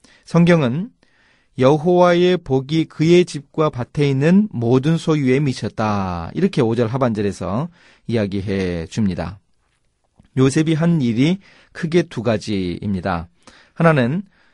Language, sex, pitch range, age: Korean, male, 110-160 Hz, 30-49